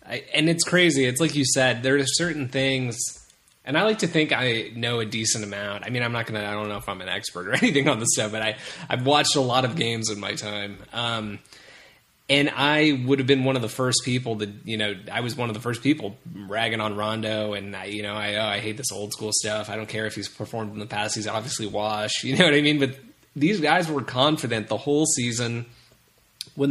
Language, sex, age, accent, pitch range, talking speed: English, male, 20-39, American, 110-140 Hz, 245 wpm